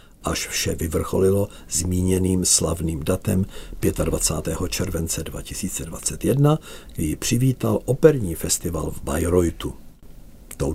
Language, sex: Czech, male